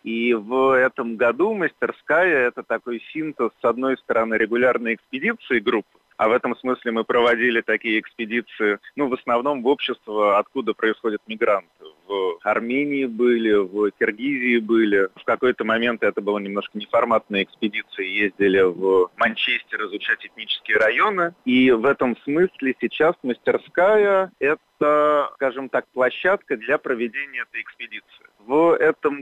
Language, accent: Russian, native